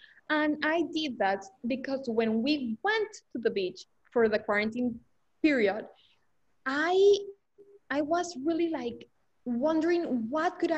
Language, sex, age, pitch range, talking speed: English, female, 20-39, 225-325 Hz, 130 wpm